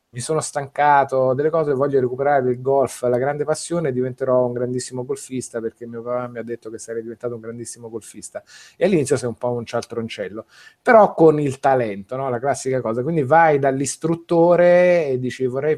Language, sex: Italian, male